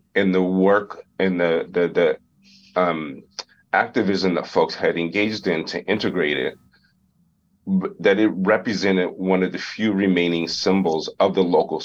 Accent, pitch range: American, 85-100 Hz